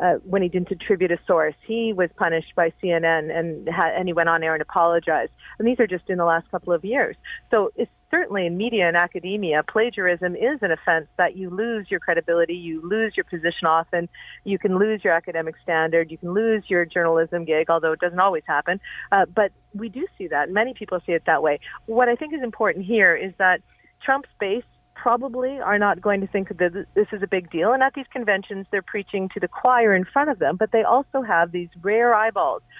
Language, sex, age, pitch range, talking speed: English, female, 40-59, 175-225 Hz, 220 wpm